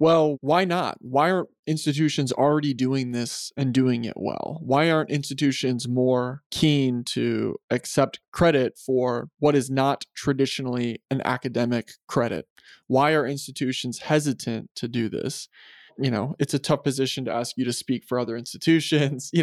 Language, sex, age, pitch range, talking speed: English, male, 20-39, 125-145 Hz, 160 wpm